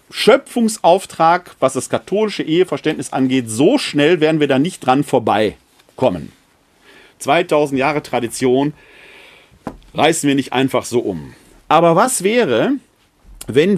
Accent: German